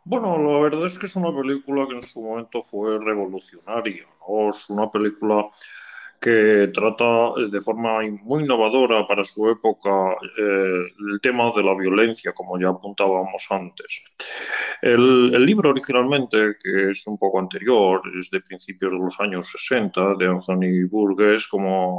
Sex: male